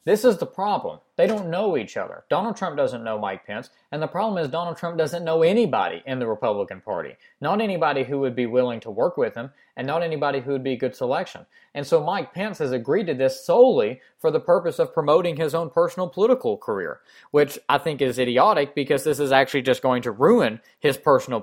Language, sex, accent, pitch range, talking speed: English, male, American, 130-170 Hz, 225 wpm